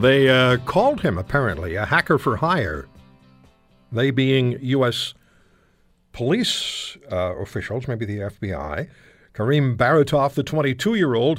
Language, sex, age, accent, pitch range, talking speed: English, male, 60-79, American, 105-140 Hz, 105 wpm